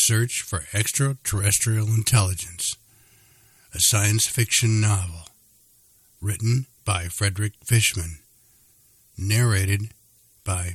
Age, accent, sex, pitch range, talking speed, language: 60-79, American, male, 95-115 Hz, 80 wpm, English